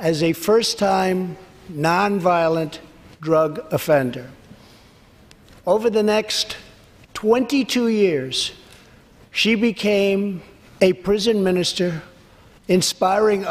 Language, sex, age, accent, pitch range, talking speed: English, male, 60-79, American, 160-205 Hz, 75 wpm